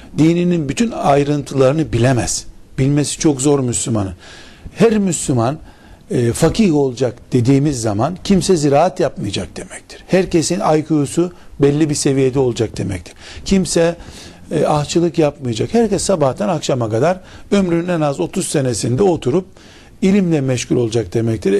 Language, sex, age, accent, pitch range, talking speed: Turkish, male, 60-79, native, 125-175 Hz, 120 wpm